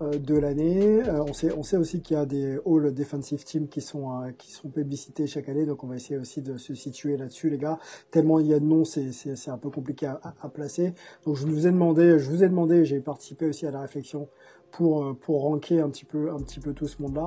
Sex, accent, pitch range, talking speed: male, French, 140-160 Hz, 270 wpm